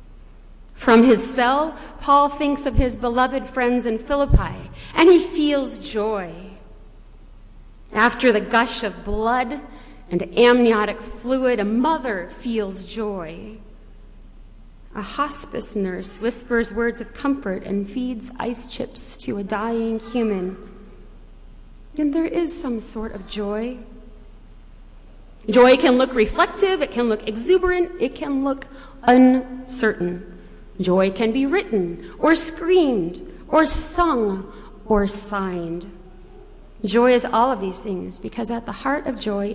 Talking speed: 125 wpm